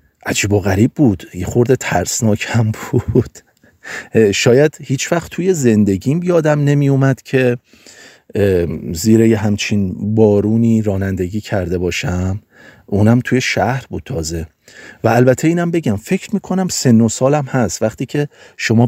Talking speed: 125 wpm